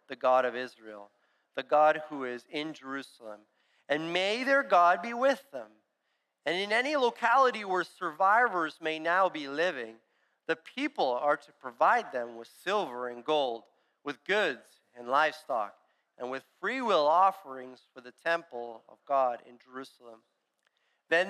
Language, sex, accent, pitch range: English, male, American, 130-185 Hz